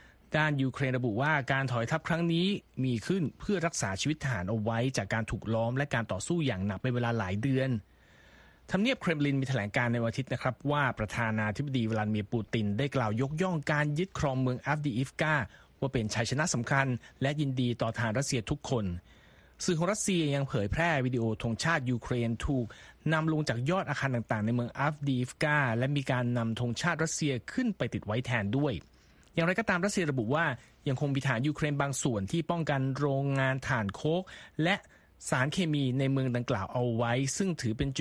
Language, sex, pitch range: Thai, male, 115-145 Hz